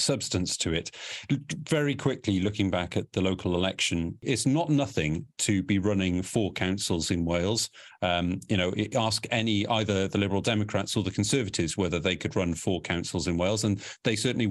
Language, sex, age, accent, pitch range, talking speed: English, male, 40-59, British, 95-120 Hz, 180 wpm